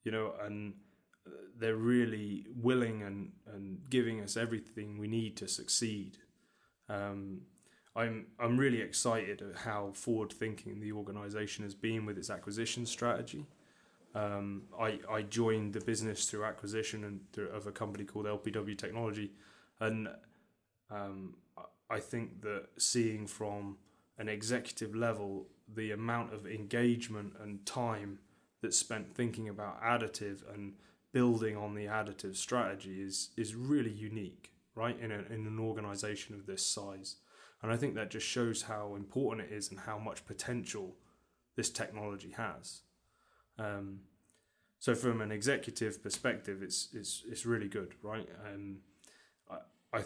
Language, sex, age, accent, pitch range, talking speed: English, male, 20-39, British, 100-115 Hz, 145 wpm